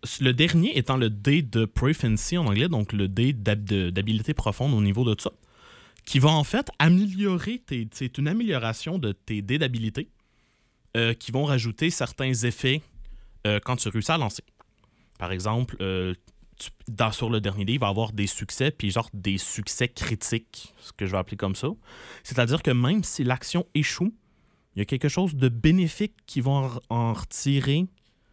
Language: French